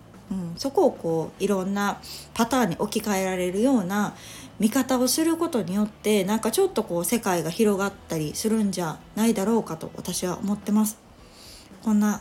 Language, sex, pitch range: Japanese, female, 185-235 Hz